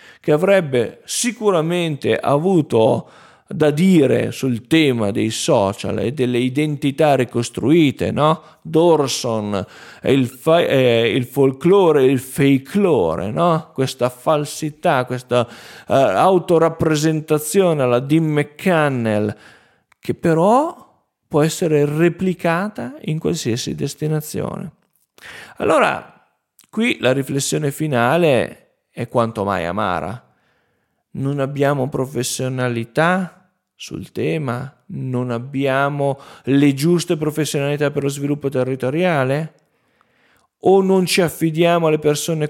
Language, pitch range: Italian, 130-170 Hz